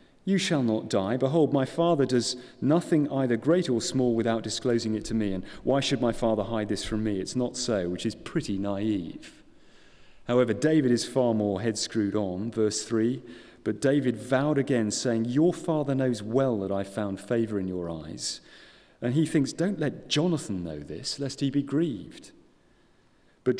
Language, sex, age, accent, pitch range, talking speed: English, male, 40-59, British, 110-140 Hz, 185 wpm